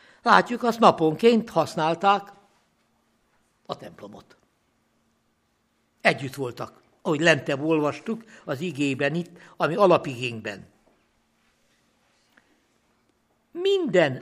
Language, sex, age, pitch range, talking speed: Hungarian, male, 60-79, 140-200 Hz, 70 wpm